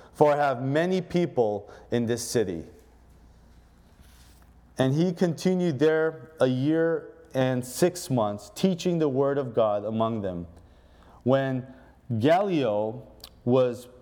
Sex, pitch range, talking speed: male, 110-155 Hz, 115 wpm